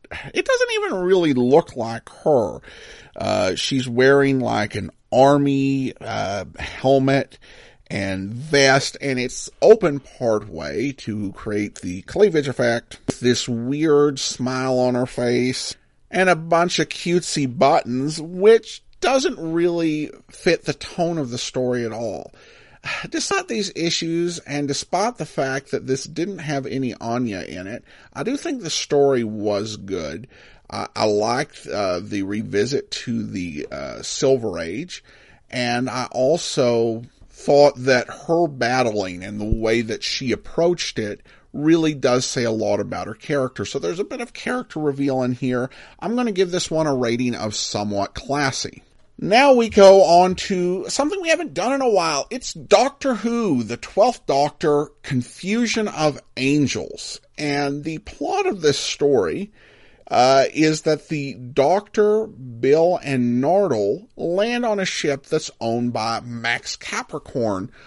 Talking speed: 150 wpm